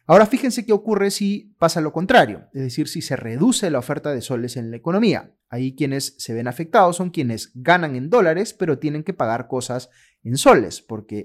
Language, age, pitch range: Spanish, 30-49, 125-175 Hz